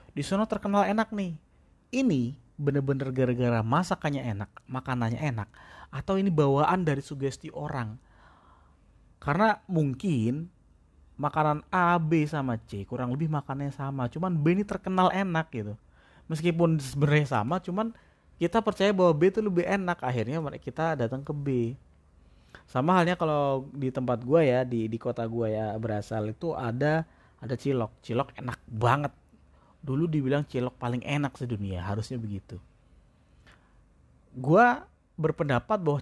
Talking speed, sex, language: 135 wpm, male, Indonesian